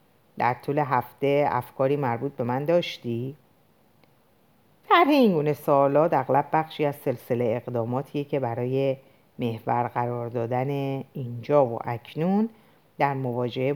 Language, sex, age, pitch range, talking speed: Persian, female, 50-69, 130-200 Hz, 115 wpm